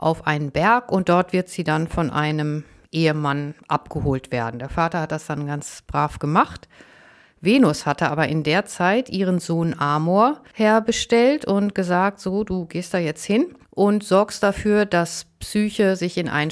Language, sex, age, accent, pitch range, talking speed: German, female, 50-69, German, 155-200 Hz, 170 wpm